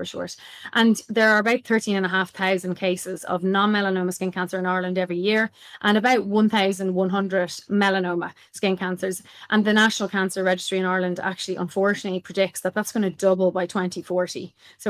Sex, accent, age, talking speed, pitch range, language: female, Irish, 20-39, 175 wpm, 190-210 Hz, English